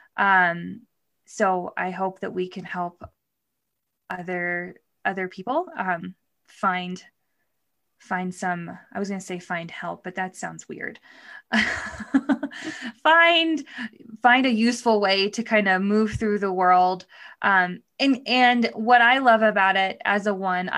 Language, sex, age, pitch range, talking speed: English, female, 20-39, 180-220 Hz, 140 wpm